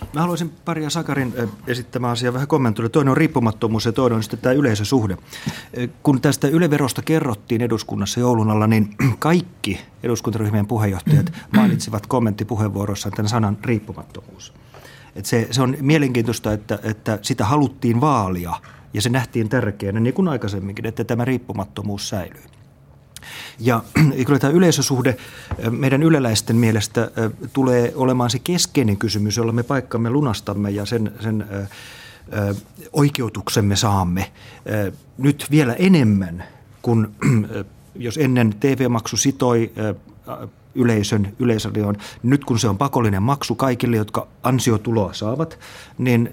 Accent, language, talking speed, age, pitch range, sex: native, Finnish, 125 wpm, 30-49, 110-135 Hz, male